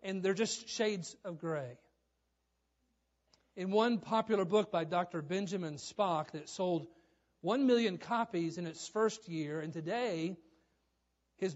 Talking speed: 135 wpm